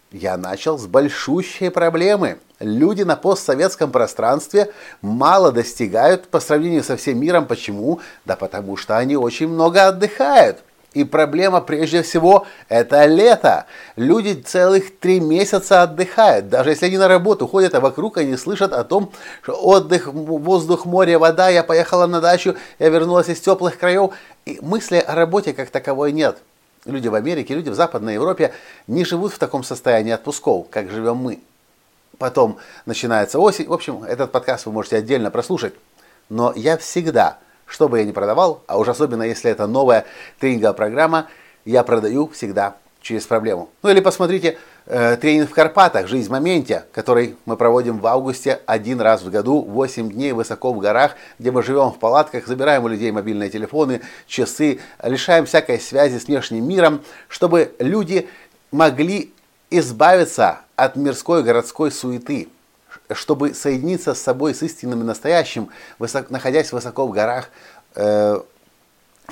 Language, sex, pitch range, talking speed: Russian, male, 120-175 Hz, 155 wpm